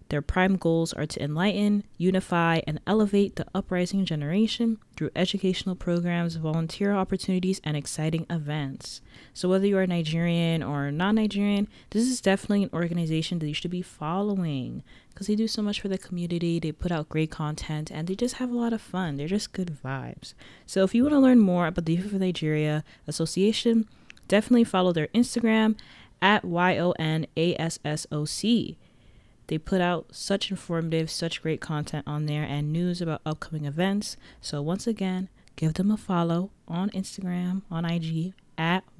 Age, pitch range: 20-39, 160-195 Hz